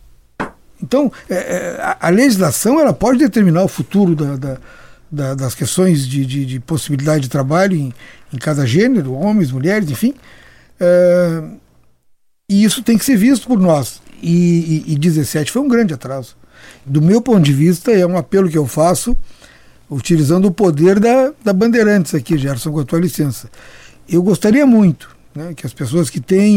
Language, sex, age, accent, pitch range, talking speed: Portuguese, male, 60-79, Brazilian, 145-205 Hz, 165 wpm